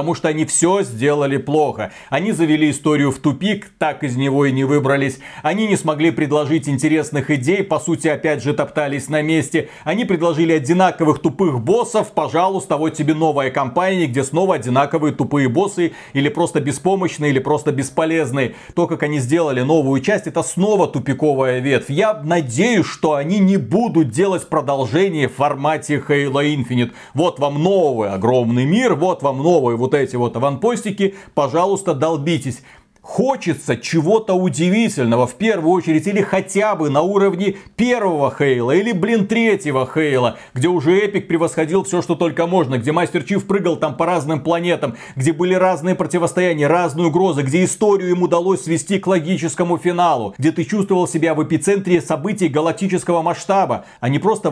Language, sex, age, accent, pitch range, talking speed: Russian, male, 40-59, native, 145-185 Hz, 160 wpm